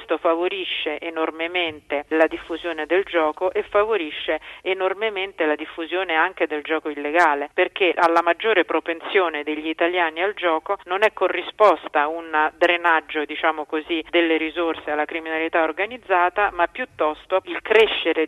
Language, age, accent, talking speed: Italian, 50-69, native, 130 wpm